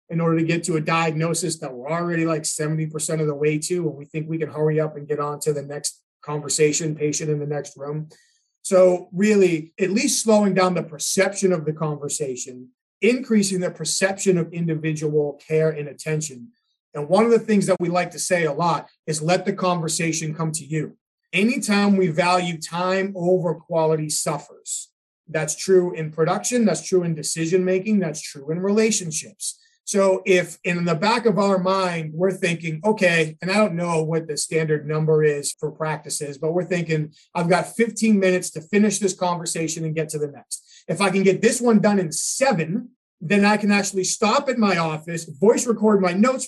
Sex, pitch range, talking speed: male, 155-195 Hz, 195 wpm